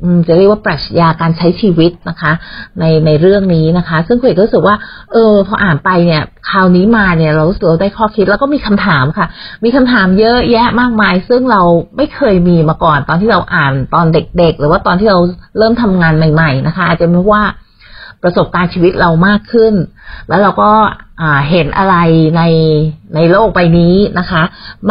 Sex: female